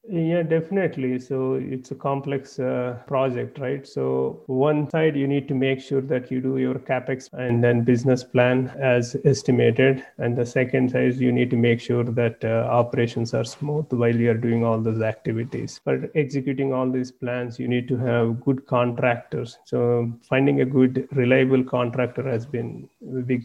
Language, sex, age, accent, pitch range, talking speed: English, male, 30-49, Indian, 120-130 Hz, 180 wpm